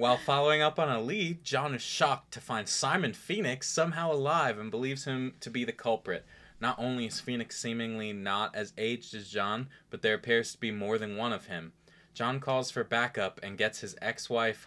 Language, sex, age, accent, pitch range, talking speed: English, male, 20-39, American, 110-130 Hz, 205 wpm